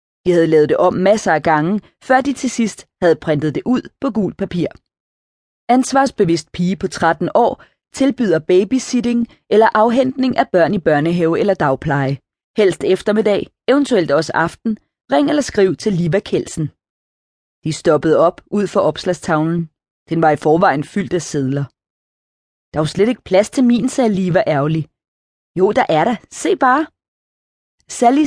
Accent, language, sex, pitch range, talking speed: native, Danish, female, 155-210 Hz, 160 wpm